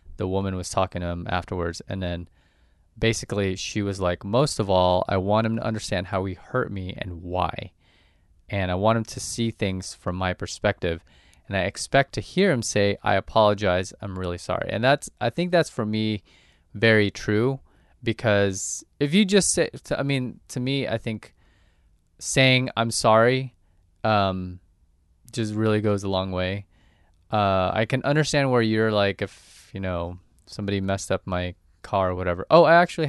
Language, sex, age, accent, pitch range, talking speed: English, male, 20-39, American, 90-110 Hz, 180 wpm